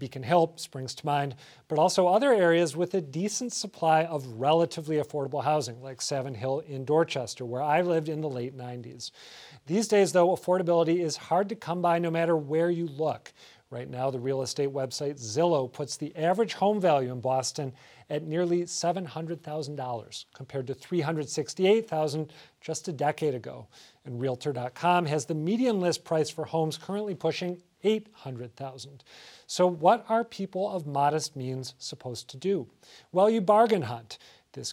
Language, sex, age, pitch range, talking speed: English, male, 40-59, 135-175 Hz, 160 wpm